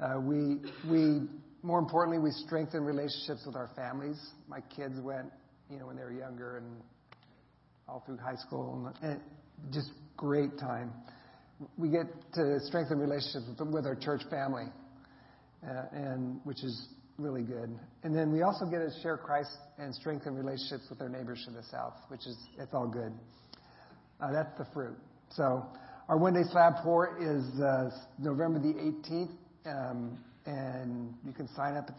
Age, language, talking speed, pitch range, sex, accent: 50-69, English, 165 wpm, 130-155 Hz, male, American